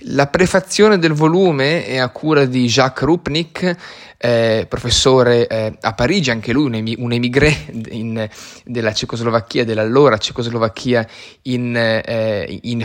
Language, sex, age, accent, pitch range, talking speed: Italian, male, 20-39, native, 115-145 Hz, 115 wpm